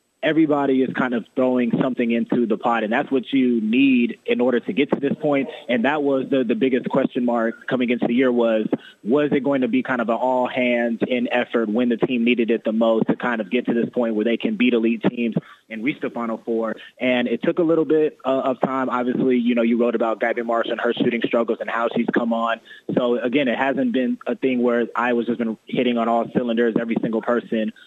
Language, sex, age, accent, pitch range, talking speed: English, male, 20-39, American, 115-125 Hz, 245 wpm